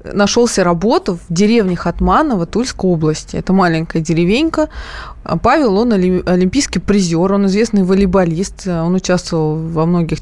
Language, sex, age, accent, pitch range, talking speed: Russian, female, 20-39, native, 180-225 Hz, 125 wpm